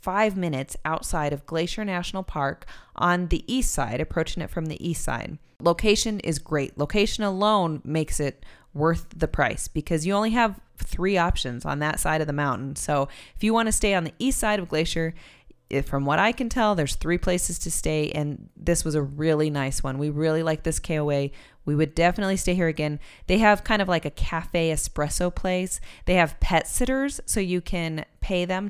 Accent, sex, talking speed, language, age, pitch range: American, female, 205 wpm, English, 20-39, 150-185 Hz